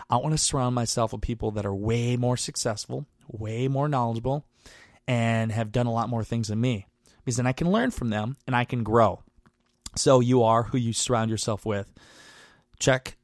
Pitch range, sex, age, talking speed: 115-130 Hz, male, 20-39, 200 wpm